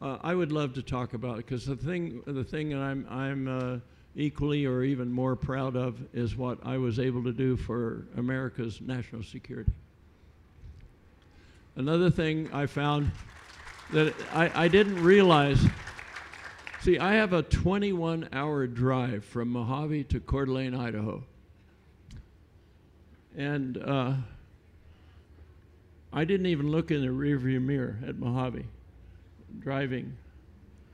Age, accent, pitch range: 60-79, American, 95-140 Hz